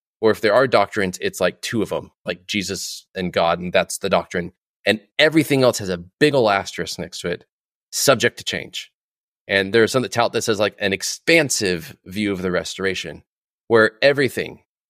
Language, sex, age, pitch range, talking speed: English, male, 20-39, 95-120 Hz, 195 wpm